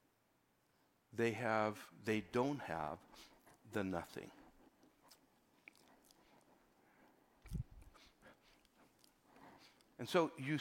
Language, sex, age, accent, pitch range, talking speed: English, male, 60-79, American, 115-140 Hz, 55 wpm